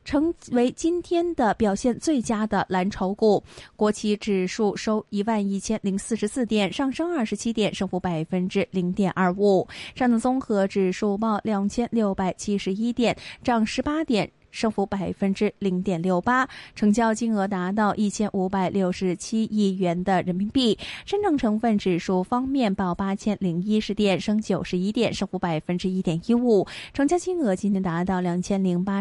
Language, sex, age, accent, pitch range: Chinese, female, 20-39, native, 190-240 Hz